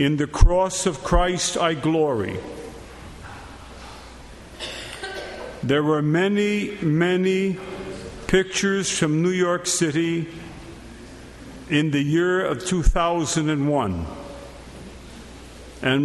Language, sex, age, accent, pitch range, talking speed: English, male, 50-69, American, 140-190 Hz, 80 wpm